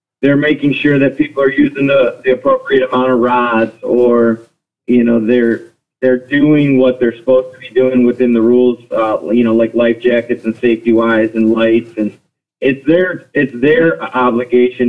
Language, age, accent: English, 40-59, American